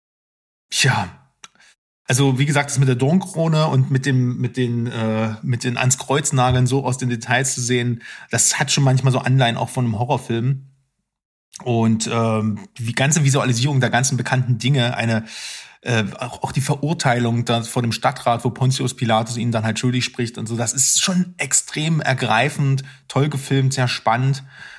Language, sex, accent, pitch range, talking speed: German, male, German, 120-140 Hz, 170 wpm